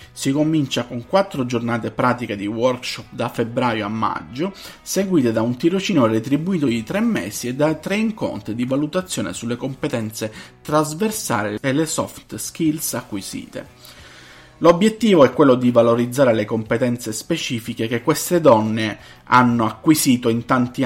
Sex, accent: male, native